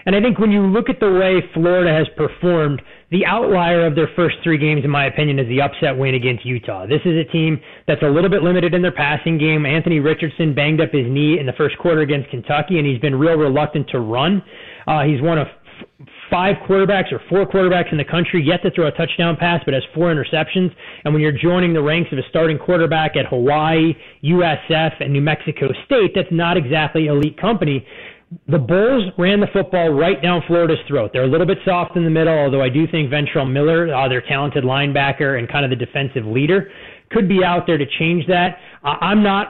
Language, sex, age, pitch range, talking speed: English, male, 30-49, 145-175 Hz, 225 wpm